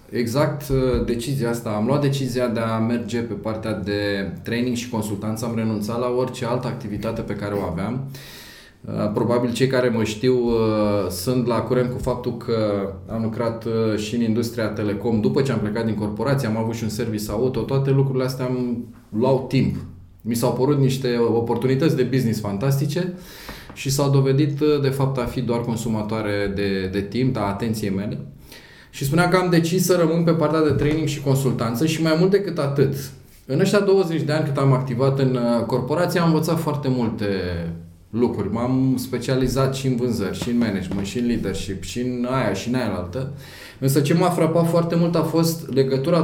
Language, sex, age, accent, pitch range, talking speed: Romanian, male, 20-39, native, 110-140 Hz, 185 wpm